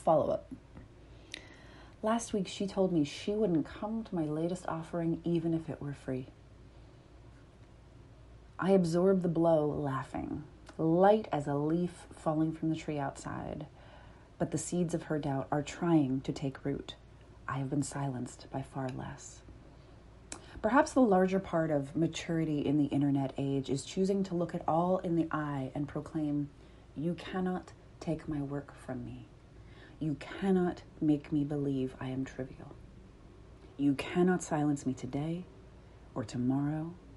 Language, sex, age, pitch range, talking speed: English, female, 30-49, 130-165 Hz, 150 wpm